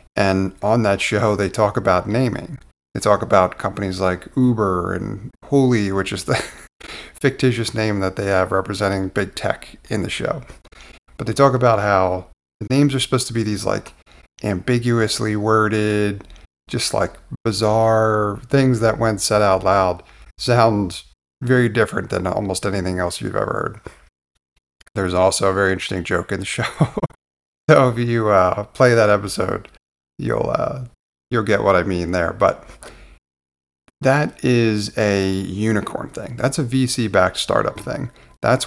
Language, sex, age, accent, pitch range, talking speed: English, male, 30-49, American, 90-115 Hz, 155 wpm